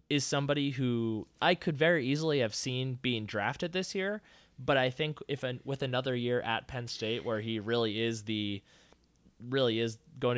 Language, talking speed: English, 185 wpm